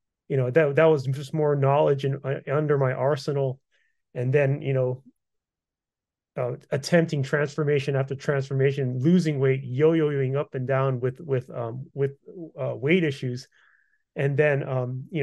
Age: 30-49